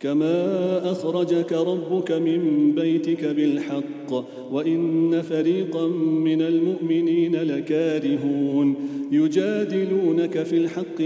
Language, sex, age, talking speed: English, male, 40-59, 75 wpm